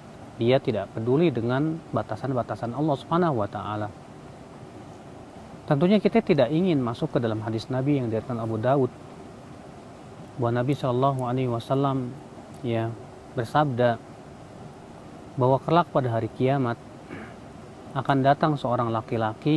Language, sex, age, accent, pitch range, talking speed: Indonesian, male, 40-59, native, 120-160 Hz, 115 wpm